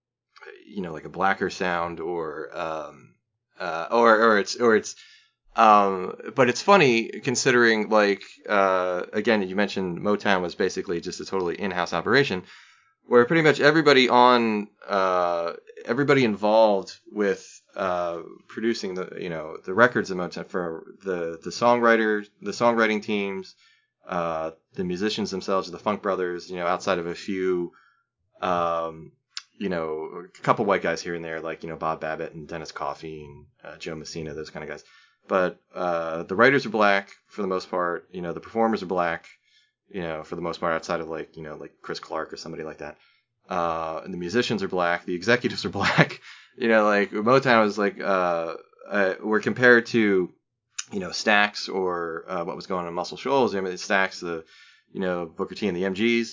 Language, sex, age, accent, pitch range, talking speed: English, male, 20-39, American, 85-115 Hz, 185 wpm